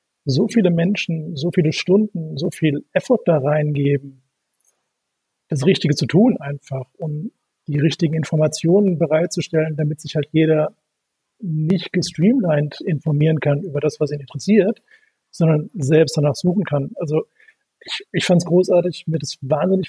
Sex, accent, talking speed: male, German, 150 wpm